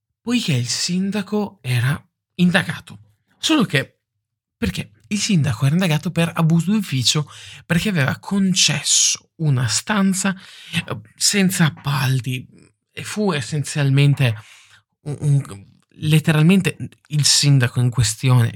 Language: Italian